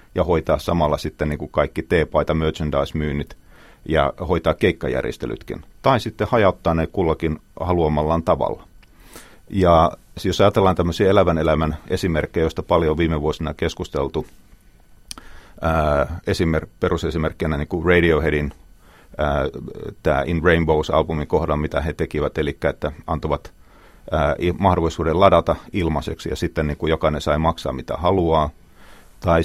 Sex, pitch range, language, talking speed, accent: male, 75-90 Hz, Finnish, 120 wpm, native